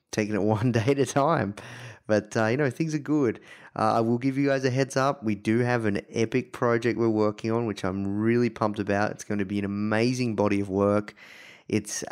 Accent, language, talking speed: Australian, English, 235 wpm